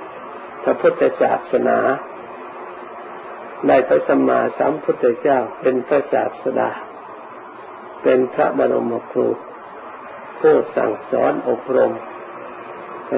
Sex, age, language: male, 50-69, Thai